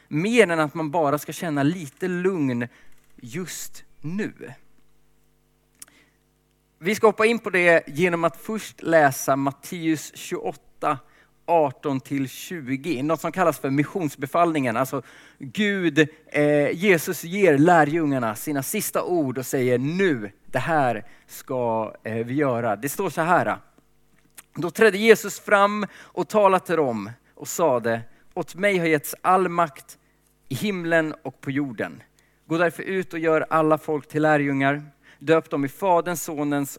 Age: 30-49